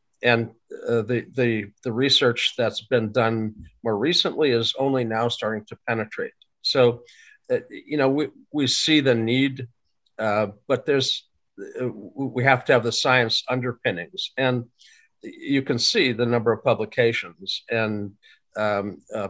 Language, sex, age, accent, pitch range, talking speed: English, male, 50-69, American, 115-135 Hz, 150 wpm